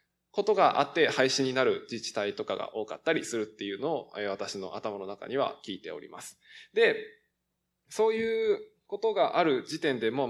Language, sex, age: Japanese, male, 20-39